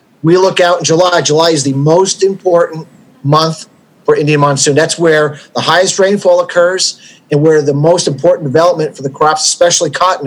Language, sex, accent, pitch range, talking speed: English, male, American, 145-180 Hz, 180 wpm